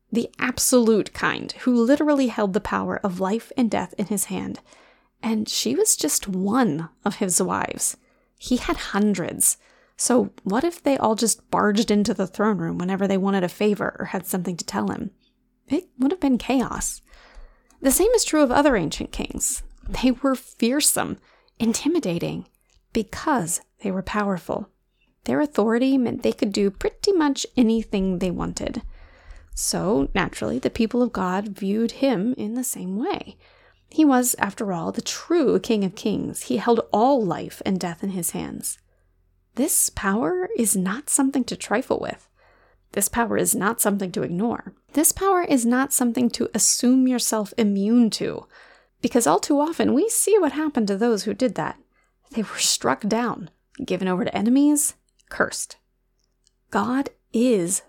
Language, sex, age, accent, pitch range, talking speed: English, female, 30-49, American, 200-265 Hz, 165 wpm